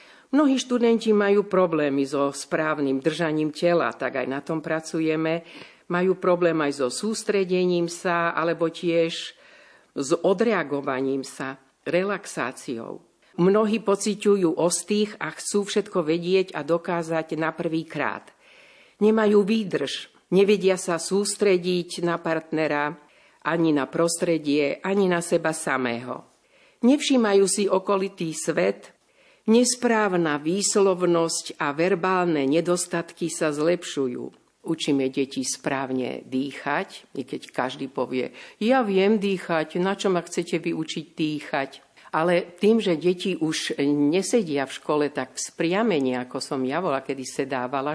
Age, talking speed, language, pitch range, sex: 50-69, 120 wpm, Slovak, 145-195 Hz, female